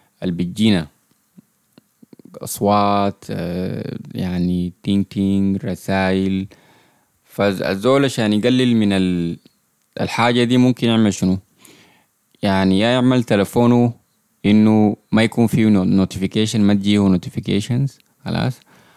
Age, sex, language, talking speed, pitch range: 20-39, male, Arabic, 90 wpm, 95-115 Hz